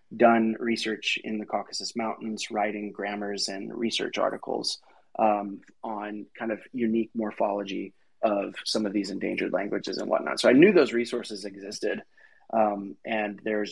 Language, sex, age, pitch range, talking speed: English, male, 20-39, 105-115 Hz, 150 wpm